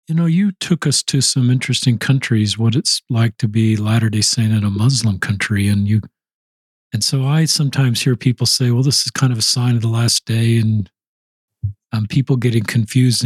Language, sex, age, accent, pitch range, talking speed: English, male, 50-69, American, 110-130 Hz, 205 wpm